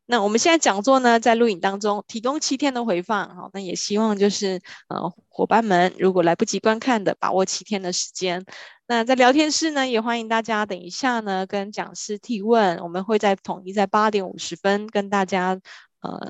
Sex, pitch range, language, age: female, 180-235 Hz, Chinese, 20-39